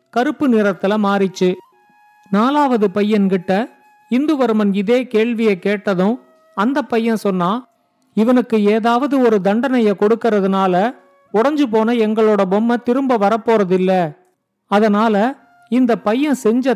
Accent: native